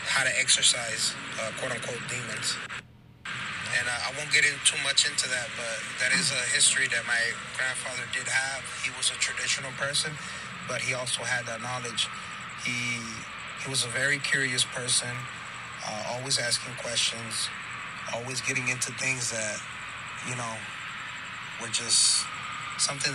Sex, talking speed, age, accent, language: male, 155 wpm, 30-49, American, English